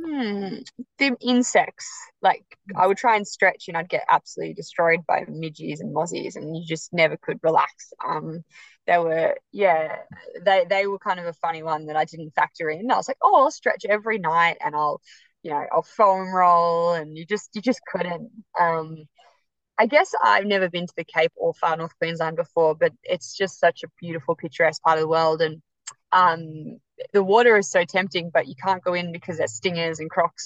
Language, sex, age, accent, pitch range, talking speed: English, female, 20-39, Australian, 165-195 Hz, 205 wpm